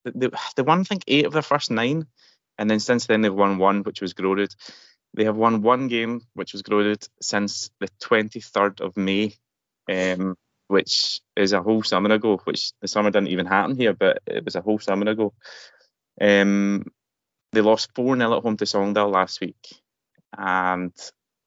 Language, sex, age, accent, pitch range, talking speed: English, male, 20-39, British, 100-120 Hz, 180 wpm